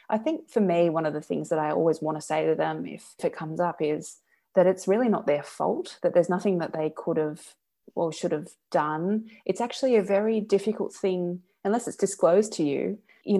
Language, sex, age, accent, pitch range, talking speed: English, female, 20-39, Australian, 155-195 Hz, 225 wpm